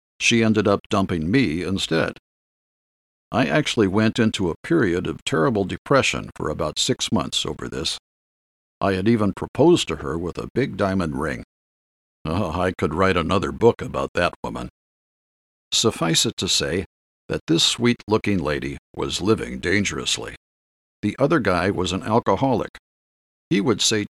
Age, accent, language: 50-69, American, English